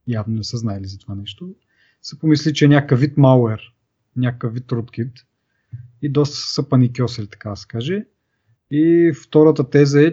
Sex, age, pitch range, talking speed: male, 30-49, 120-145 Hz, 170 wpm